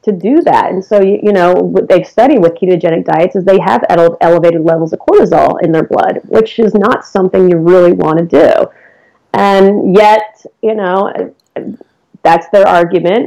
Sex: female